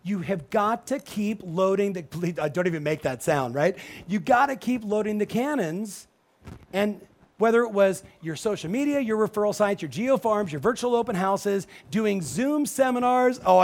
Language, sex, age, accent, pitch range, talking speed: English, male, 40-59, American, 170-220 Hz, 180 wpm